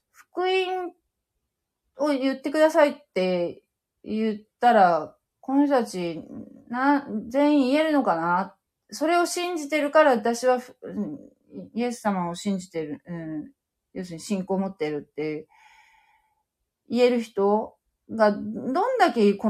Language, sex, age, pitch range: Japanese, female, 40-59, 195-280 Hz